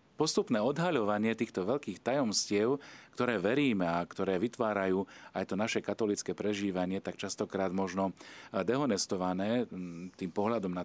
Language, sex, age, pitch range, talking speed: Slovak, male, 40-59, 90-110 Hz, 120 wpm